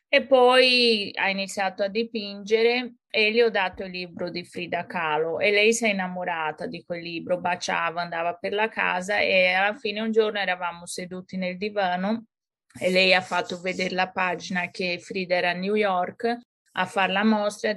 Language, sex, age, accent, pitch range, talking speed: Italian, female, 30-49, native, 175-220 Hz, 190 wpm